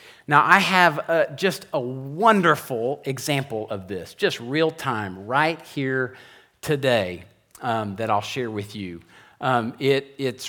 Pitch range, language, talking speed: 125-190 Hz, English, 145 wpm